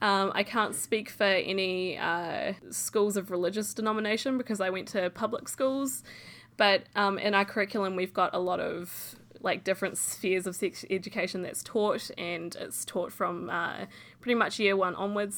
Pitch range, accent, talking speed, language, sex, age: 180-210 Hz, Australian, 175 wpm, English, female, 10-29